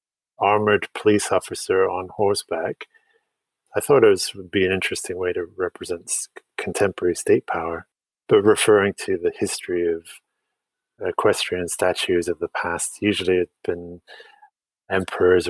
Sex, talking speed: male, 135 wpm